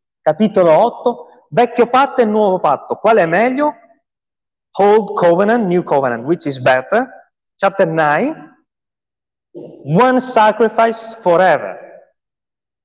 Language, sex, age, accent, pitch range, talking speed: Italian, male, 30-49, native, 150-240 Hz, 105 wpm